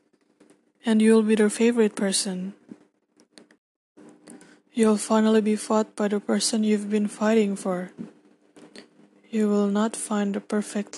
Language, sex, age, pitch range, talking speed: English, female, 20-39, 195-220 Hz, 125 wpm